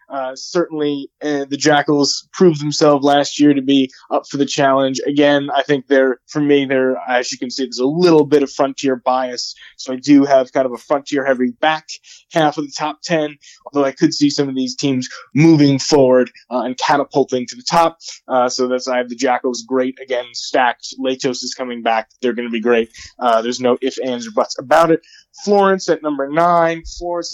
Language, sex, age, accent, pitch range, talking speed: English, male, 20-39, American, 130-160 Hz, 210 wpm